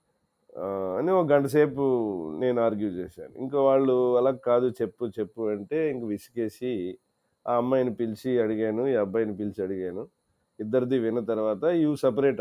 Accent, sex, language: native, male, Telugu